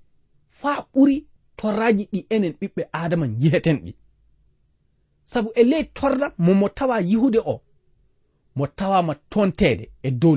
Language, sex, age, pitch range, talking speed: English, male, 40-59, 140-220 Hz, 115 wpm